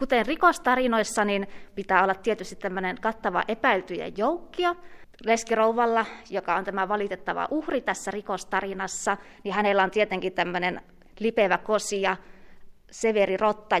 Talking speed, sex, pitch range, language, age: 115 wpm, female, 195-250 Hz, Finnish, 20-39